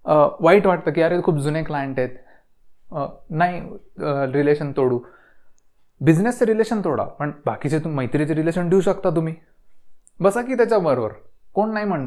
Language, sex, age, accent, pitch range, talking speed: Marathi, male, 30-49, native, 150-190 Hz, 140 wpm